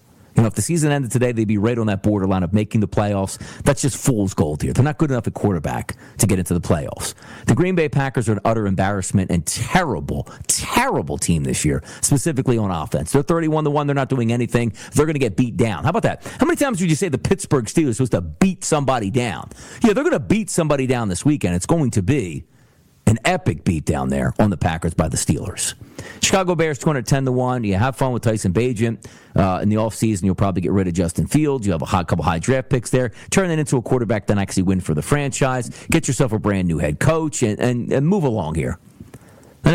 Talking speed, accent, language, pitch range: 240 wpm, American, English, 95-140 Hz